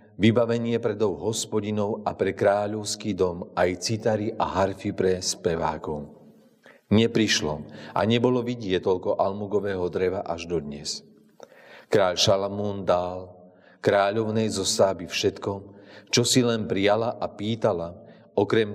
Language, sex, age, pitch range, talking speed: Slovak, male, 40-59, 95-110 Hz, 120 wpm